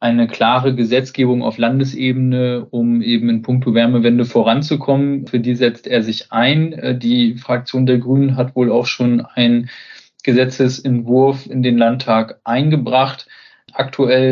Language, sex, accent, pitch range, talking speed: German, male, German, 120-135 Hz, 135 wpm